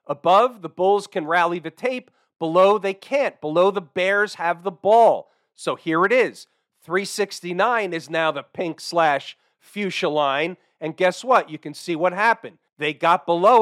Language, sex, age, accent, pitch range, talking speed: English, male, 40-59, American, 165-200 Hz, 170 wpm